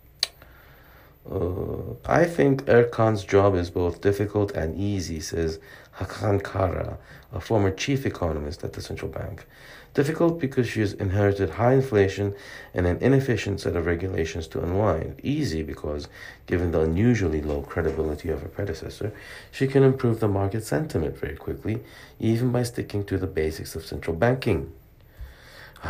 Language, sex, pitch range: Korean, male, 80-120 Hz